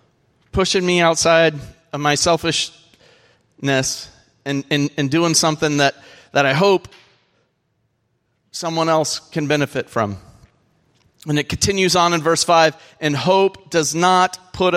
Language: English